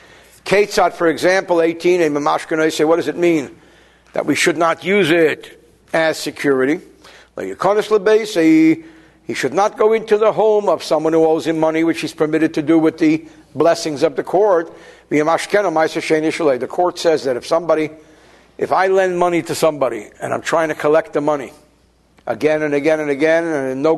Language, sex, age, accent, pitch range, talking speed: English, male, 60-79, American, 160-215 Hz, 165 wpm